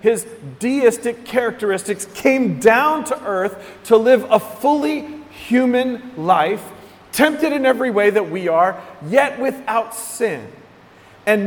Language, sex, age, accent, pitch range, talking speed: English, male, 40-59, American, 165-245 Hz, 125 wpm